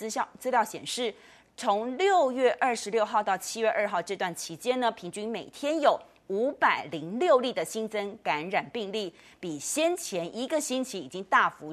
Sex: female